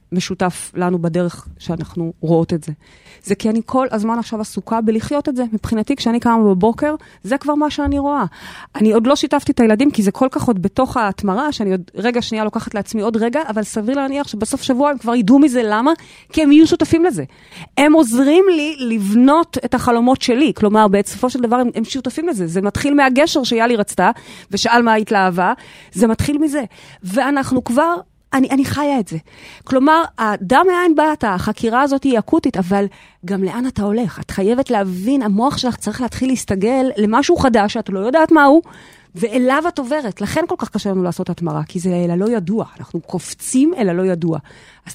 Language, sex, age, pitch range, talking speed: Hebrew, female, 30-49, 200-270 Hz, 185 wpm